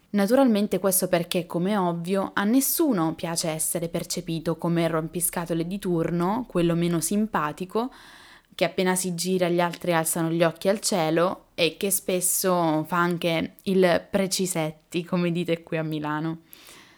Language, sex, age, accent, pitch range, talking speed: Italian, female, 10-29, native, 165-200 Hz, 145 wpm